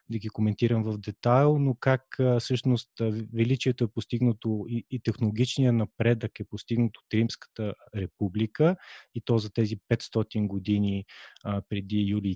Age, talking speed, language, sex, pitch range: 20-39, 140 wpm, Bulgarian, male, 105-120 Hz